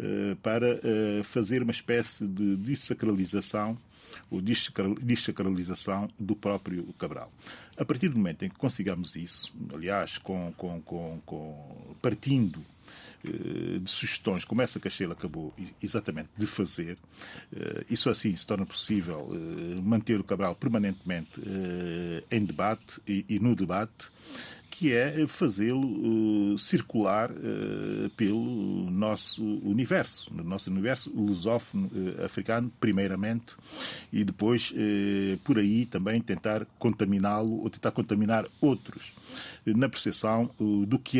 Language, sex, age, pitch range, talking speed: Portuguese, male, 40-59, 95-115 Hz, 110 wpm